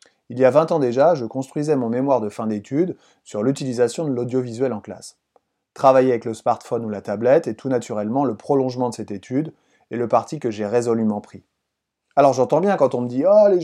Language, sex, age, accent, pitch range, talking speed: French, male, 30-49, French, 120-160 Hz, 220 wpm